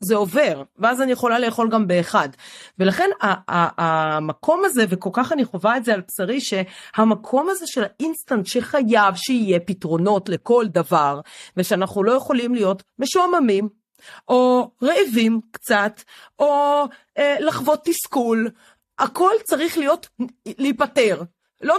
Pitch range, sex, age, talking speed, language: 200-295 Hz, female, 40-59, 135 wpm, Hebrew